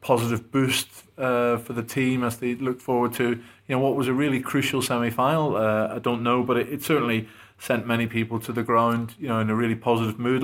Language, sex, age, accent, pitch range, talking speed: English, male, 30-49, British, 110-130 Hz, 230 wpm